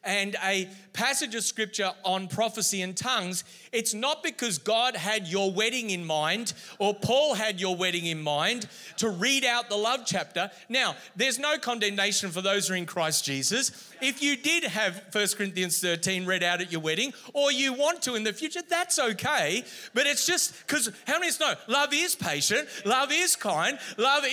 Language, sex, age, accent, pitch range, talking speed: English, male, 30-49, Australian, 195-275 Hz, 195 wpm